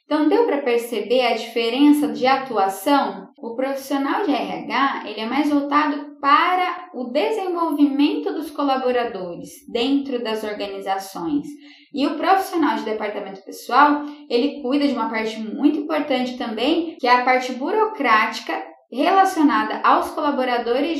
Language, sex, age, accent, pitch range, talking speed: Portuguese, female, 10-29, Brazilian, 245-300 Hz, 130 wpm